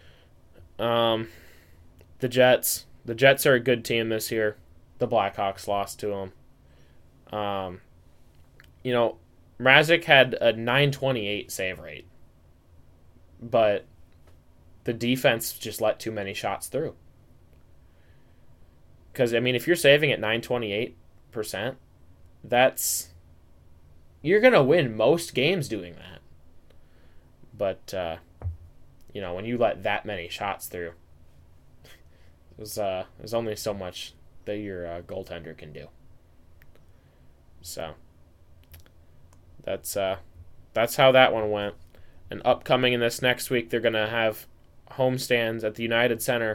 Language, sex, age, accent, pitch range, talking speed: English, male, 10-29, American, 85-115 Hz, 125 wpm